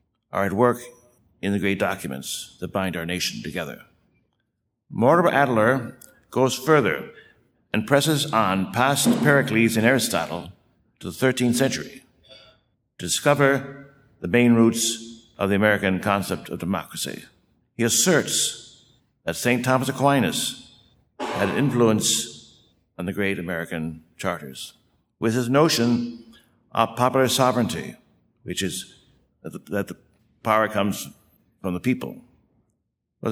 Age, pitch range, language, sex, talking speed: 60-79, 95-125 Hz, English, male, 120 wpm